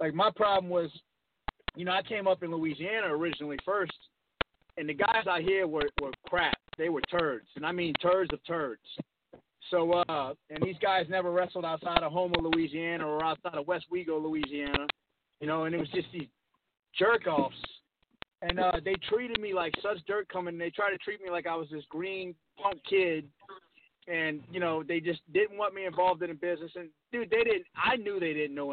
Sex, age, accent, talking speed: male, 30-49, American, 205 wpm